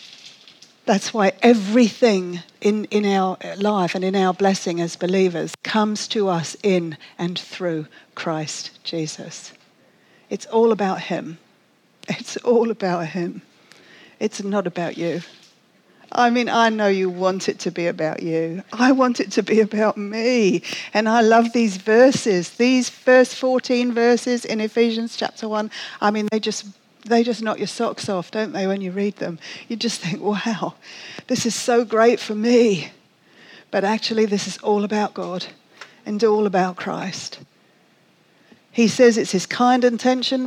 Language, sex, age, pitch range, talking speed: English, female, 50-69, 185-230 Hz, 160 wpm